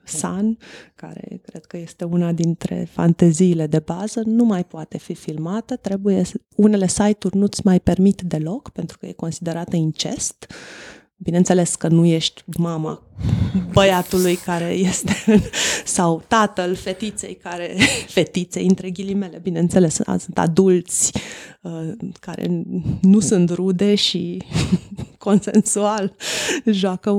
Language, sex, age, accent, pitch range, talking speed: Romanian, female, 20-39, native, 170-205 Hz, 115 wpm